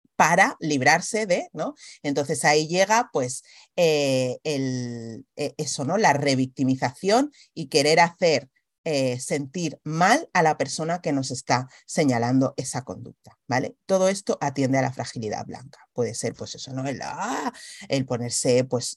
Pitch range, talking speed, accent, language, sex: 125-180 Hz, 145 wpm, Spanish, Spanish, female